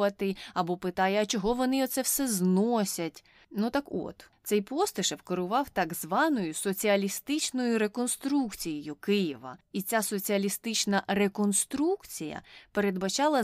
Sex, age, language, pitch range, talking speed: female, 20-39, Ukrainian, 180-245 Hz, 105 wpm